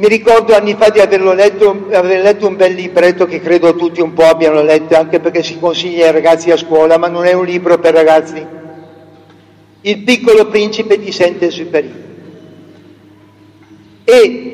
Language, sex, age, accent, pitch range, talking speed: Italian, male, 50-69, native, 175-250 Hz, 165 wpm